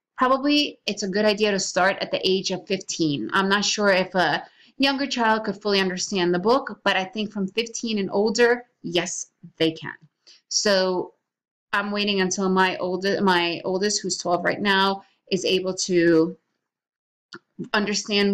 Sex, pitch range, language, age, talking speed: female, 175-210 Hz, English, 30-49, 165 wpm